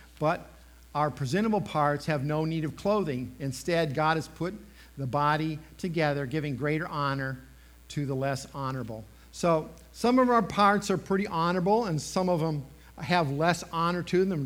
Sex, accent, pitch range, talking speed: male, American, 130-195 Hz, 165 wpm